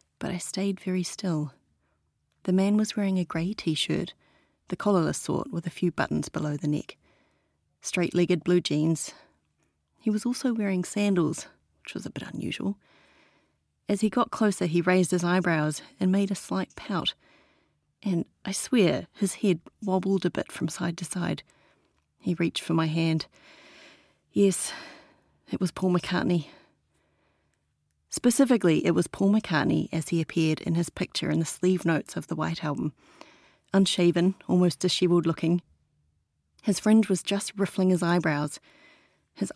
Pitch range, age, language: 165-200 Hz, 30-49, English